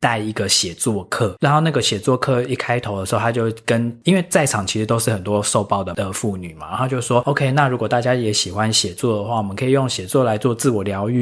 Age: 20-39